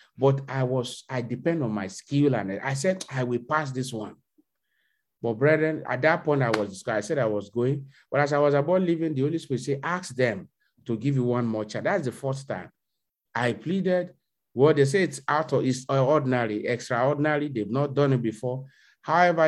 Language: English